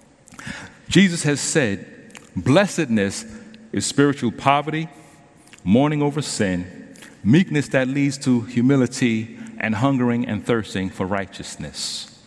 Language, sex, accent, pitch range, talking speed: English, male, American, 110-150 Hz, 105 wpm